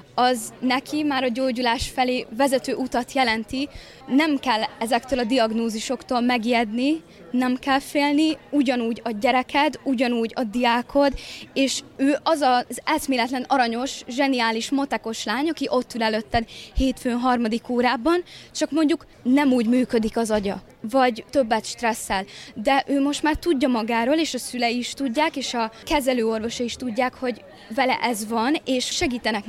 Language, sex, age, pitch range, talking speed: Hungarian, female, 20-39, 235-275 Hz, 145 wpm